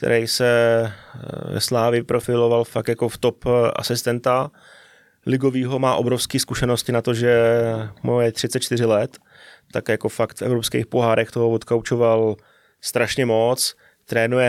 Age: 20-39